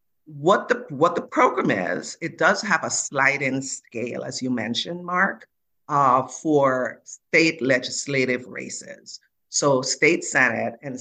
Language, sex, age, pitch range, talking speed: English, female, 50-69, 130-165 Hz, 140 wpm